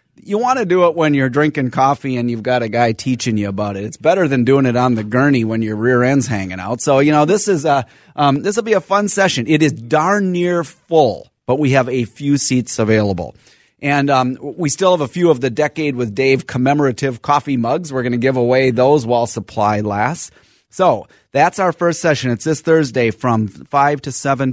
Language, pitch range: English, 115-150 Hz